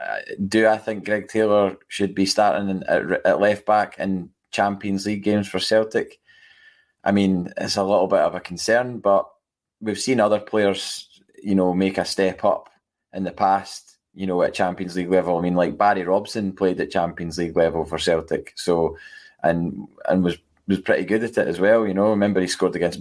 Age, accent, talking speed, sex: 20-39, British, 195 wpm, male